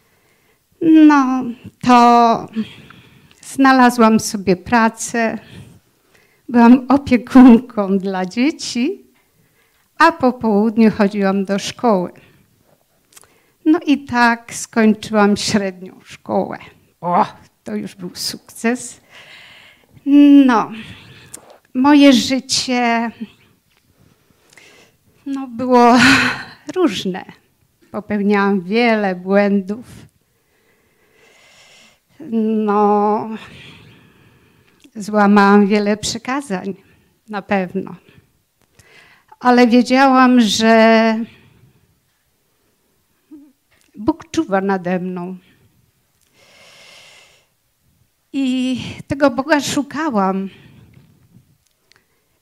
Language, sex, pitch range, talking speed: Polish, female, 200-255 Hz, 60 wpm